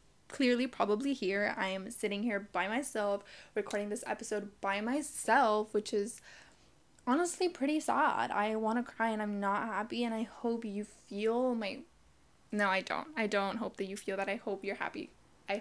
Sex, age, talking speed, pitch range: female, 10-29, 185 wpm, 205-250 Hz